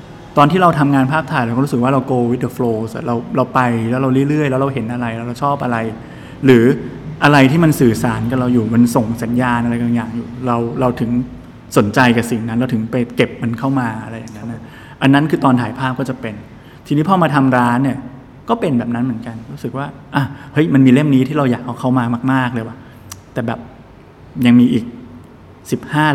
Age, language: 20-39, Thai